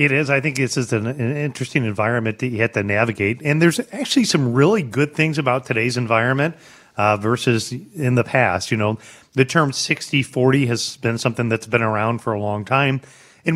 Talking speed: 210 wpm